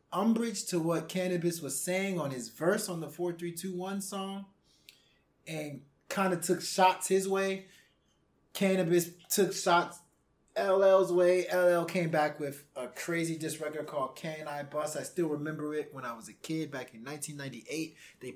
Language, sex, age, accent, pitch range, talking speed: English, male, 20-39, American, 150-195 Hz, 165 wpm